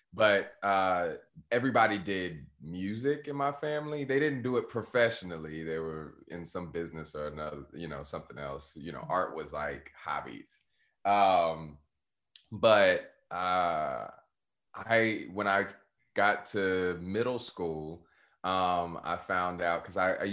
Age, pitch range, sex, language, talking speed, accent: 20-39, 80-95 Hz, male, English, 140 wpm, American